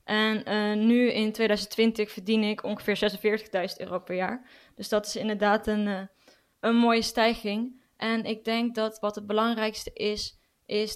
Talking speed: 160 wpm